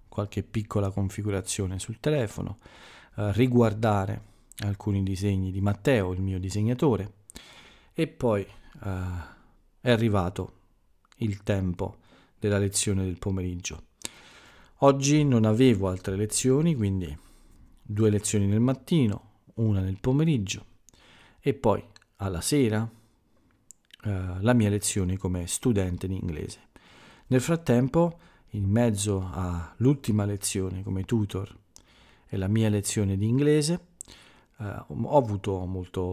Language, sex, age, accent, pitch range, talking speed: Italian, male, 40-59, native, 95-115 Hz, 115 wpm